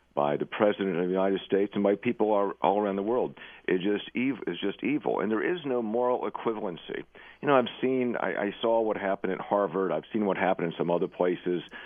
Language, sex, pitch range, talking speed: English, male, 90-115 Hz, 230 wpm